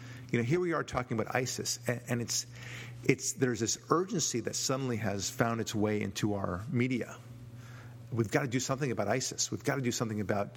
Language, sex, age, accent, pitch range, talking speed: English, male, 50-69, American, 115-130 Hz, 205 wpm